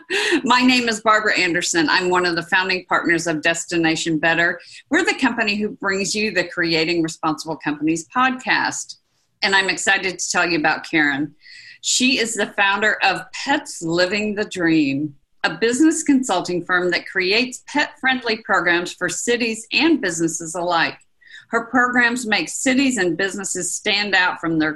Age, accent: 50-69, American